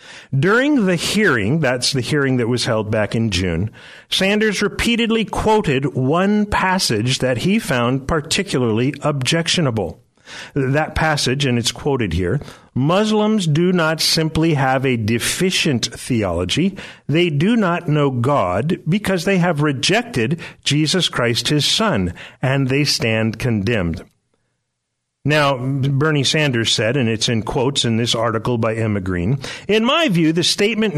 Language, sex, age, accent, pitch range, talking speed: English, male, 50-69, American, 115-175 Hz, 140 wpm